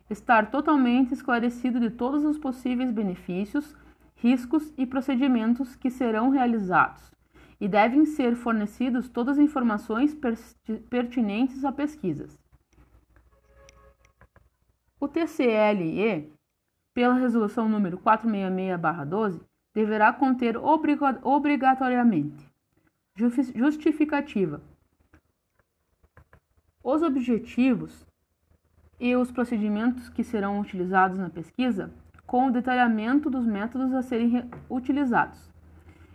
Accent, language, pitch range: Brazilian, Portuguese, 205-260 Hz